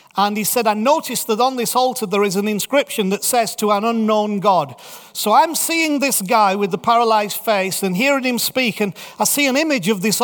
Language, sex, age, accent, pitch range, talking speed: English, male, 40-59, British, 200-250 Hz, 230 wpm